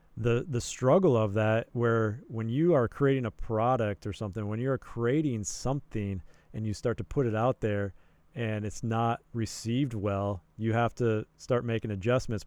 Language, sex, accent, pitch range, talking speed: English, male, American, 110-130 Hz, 180 wpm